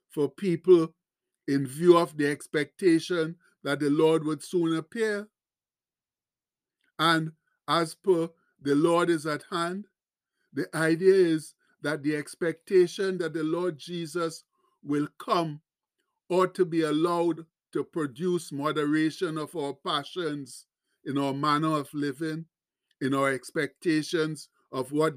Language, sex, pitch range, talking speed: English, male, 150-180 Hz, 125 wpm